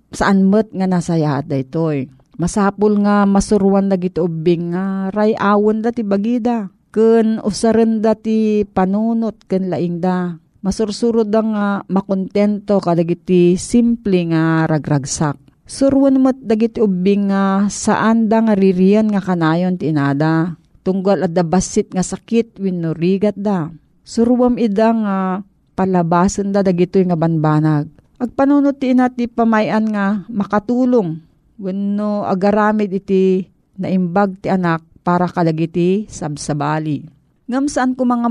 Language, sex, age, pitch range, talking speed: Filipino, female, 40-59, 175-220 Hz, 115 wpm